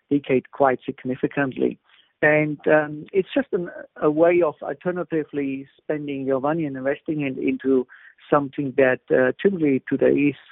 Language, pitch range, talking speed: English, 130-150 Hz, 145 wpm